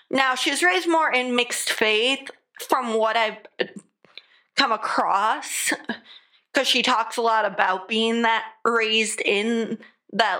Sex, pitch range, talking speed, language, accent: female, 210-250 Hz, 135 wpm, English, American